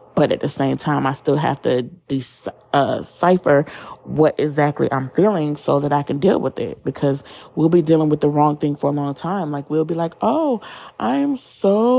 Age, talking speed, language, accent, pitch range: 30-49, 210 wpm, English, American, 135-165 Hz